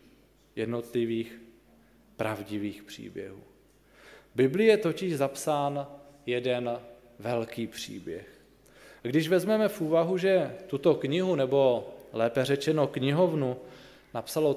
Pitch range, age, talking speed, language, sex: 120-145 Hz, 20-39, 100 wpm, Slovak, male